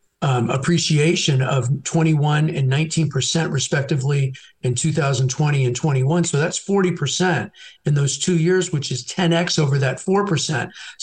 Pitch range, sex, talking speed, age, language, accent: 135-160 Hz, male, 135 wpm, 50-69, English, American